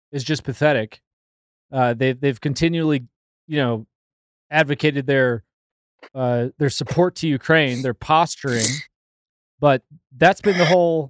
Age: 20-39